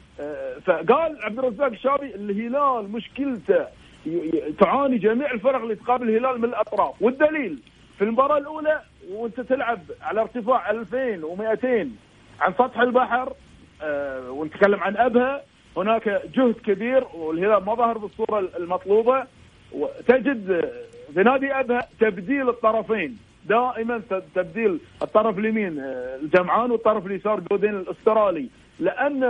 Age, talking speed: 40-59, 110 wpm